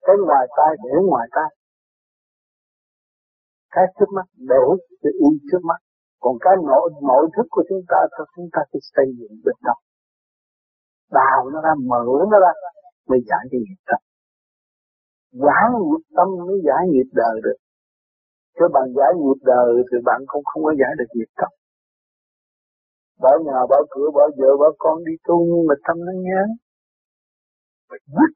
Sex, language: male, Vietnamese